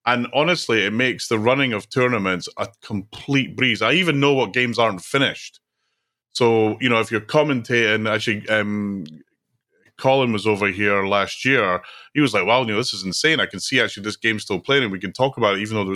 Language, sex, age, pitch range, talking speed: English, male, 30-49, 100-120 Hz, 220 wpm